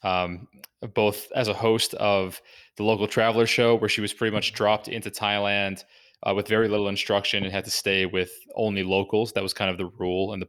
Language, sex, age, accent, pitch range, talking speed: English, male, 20-39, American, 95-115 Hz, 215 wpm